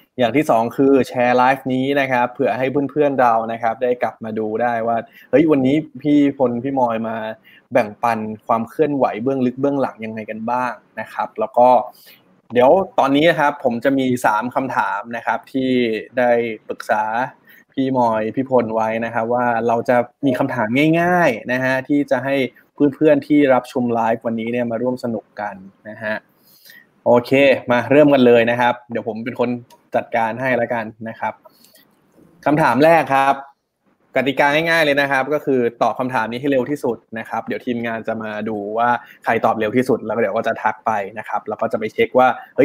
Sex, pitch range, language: male, 115-140 Hz, Thai